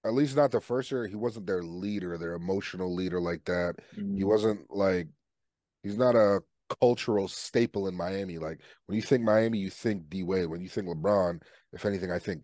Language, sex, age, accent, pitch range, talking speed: English, male, 30-49, American, 95-135 Hz, 205 wpm